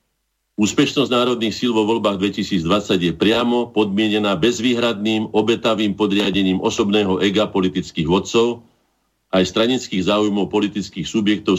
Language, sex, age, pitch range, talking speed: Slovak, male, 50-69, 95-115 Hz, 110 wpm